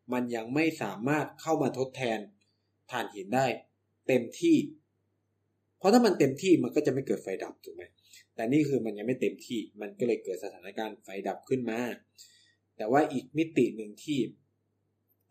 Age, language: 20-39, Thai